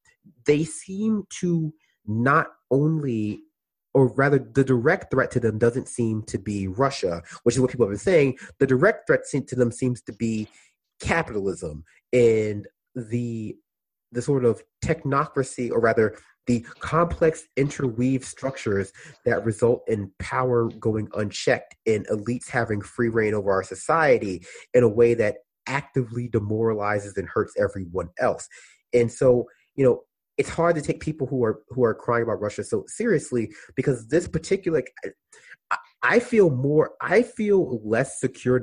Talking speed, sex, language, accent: 155 wpm, male, English, American